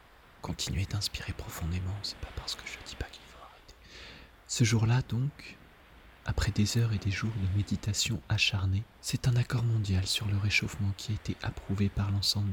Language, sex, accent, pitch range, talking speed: French, male, French, 95-110 Hz, 180 wpm